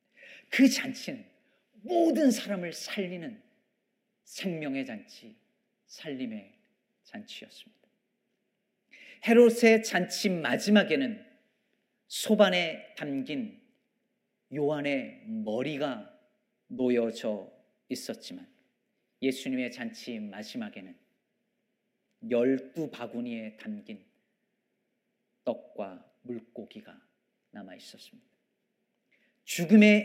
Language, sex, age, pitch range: Korean, male, 40-59, 155-235 Hz